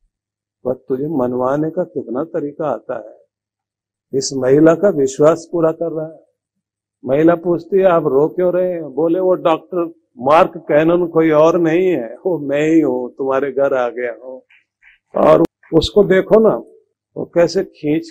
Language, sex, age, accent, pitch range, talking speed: Hindi, male, 50-69, native, 110-165 Hz, 160 wpm